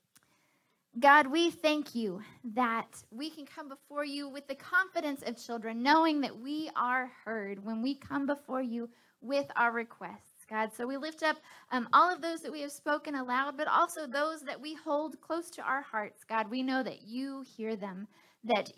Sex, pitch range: female, 225-285 Hz